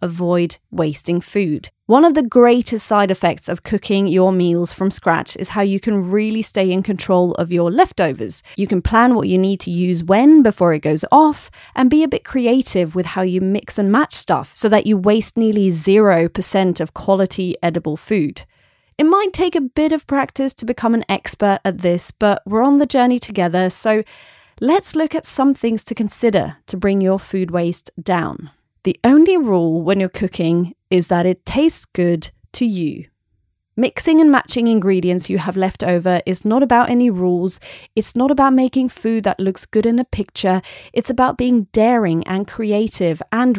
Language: English